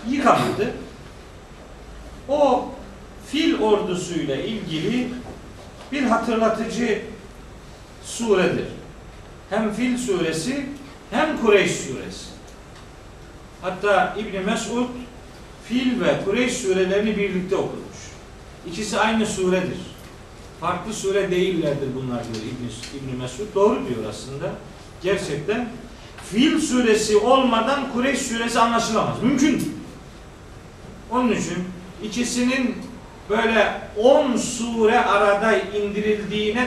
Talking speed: 85 wpm